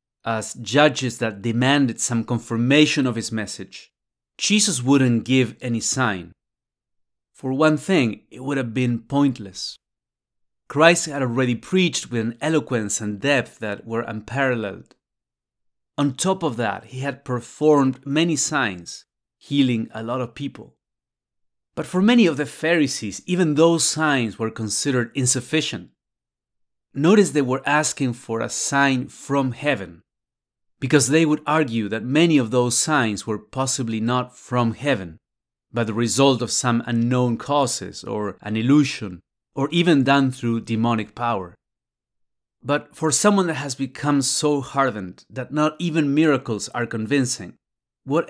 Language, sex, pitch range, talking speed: English, male, 115-150 Hz, 140 wpm